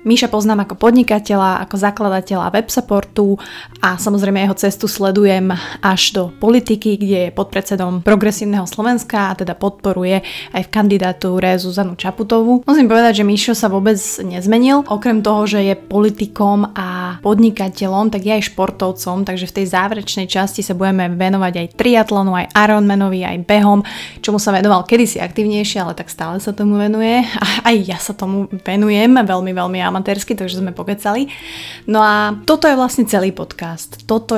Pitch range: 190-220 Hz